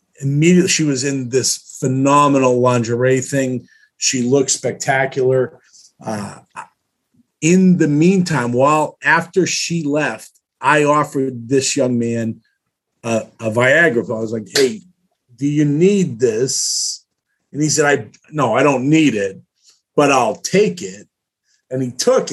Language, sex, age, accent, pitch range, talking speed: English, male, 50-69, American, 130-170 Hz, 135 wpm